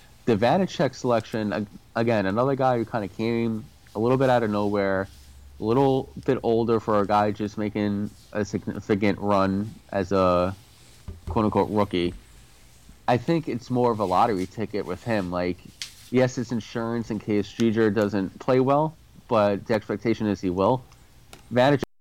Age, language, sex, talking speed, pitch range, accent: 30-49, English, male, 160 wpm, 105-120 Hz, American